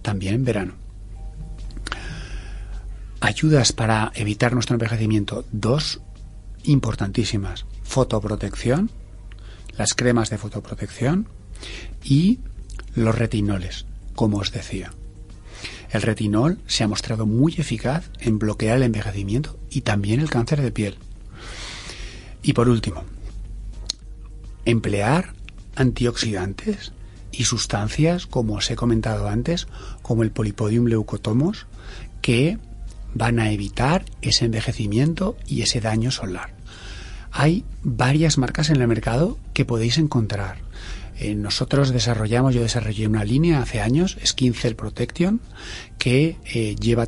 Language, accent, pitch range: Spanish, Spanish, 105-125 Hz